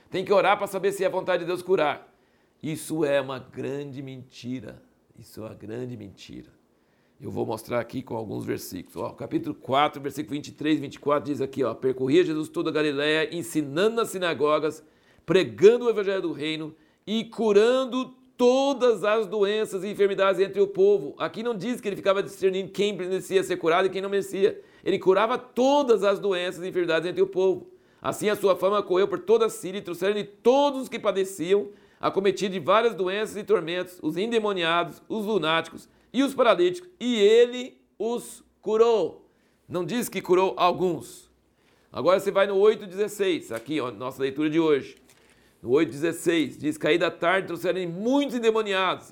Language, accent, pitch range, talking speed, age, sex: Portuguese, Brazilian, 160-225 Hz, 170 wpm, 60-79, male